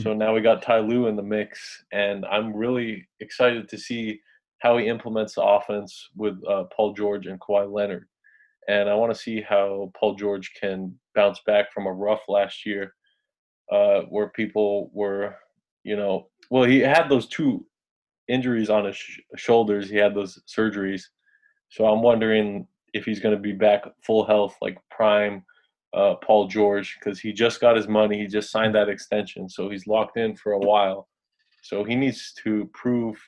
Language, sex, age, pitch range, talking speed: English, male, 20-39, 100-115 Hz, 180 wpm